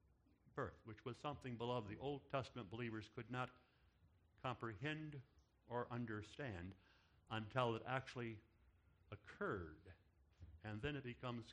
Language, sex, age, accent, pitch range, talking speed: English, male, 60-79, American, 85-125 Hz, 115 wpm